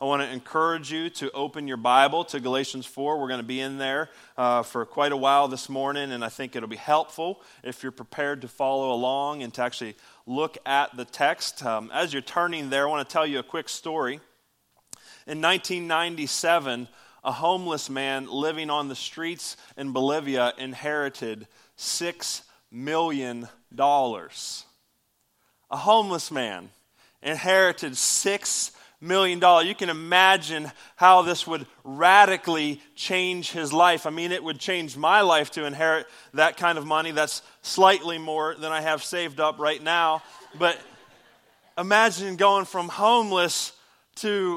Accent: American